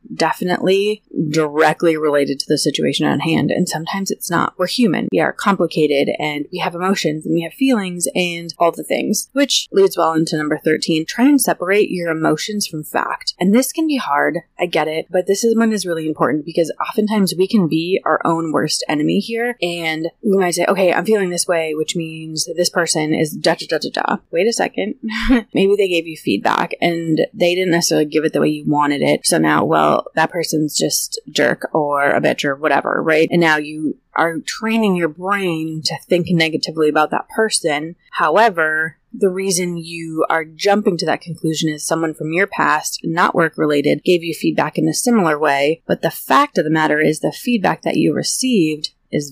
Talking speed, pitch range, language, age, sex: 200 wpm, 155-195 Hz, English, 20-39, female